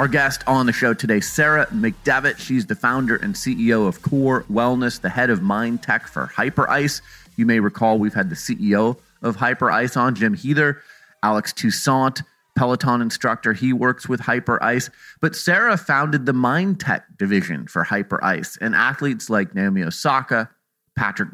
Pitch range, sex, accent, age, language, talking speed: 115-150 Hz, male, American, 30-49, English, 165 wpm